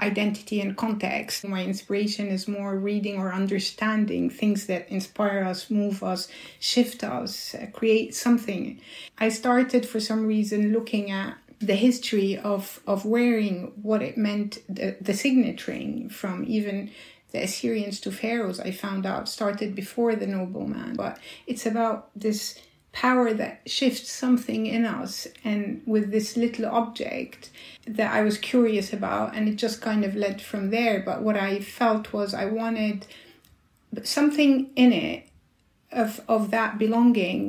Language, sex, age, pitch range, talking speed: English, female, 60-79, 205-230 Hz, 150 wpm